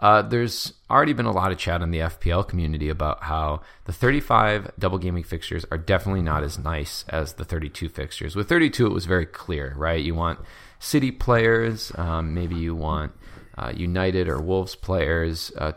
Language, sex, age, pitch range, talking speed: English, male, 30-49, 80-110 Hz, 185 wpm